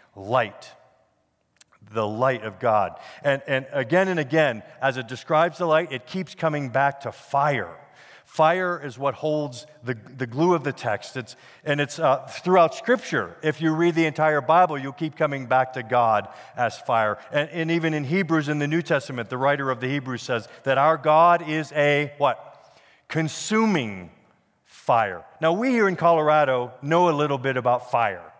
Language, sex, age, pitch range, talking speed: English, male, 50-69, 130-165 Hz, 180 wpm